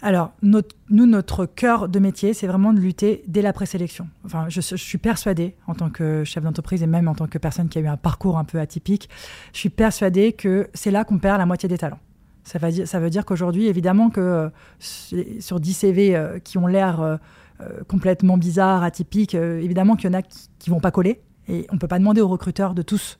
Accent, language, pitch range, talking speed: French, French, 170-200 Hz, 235 wpm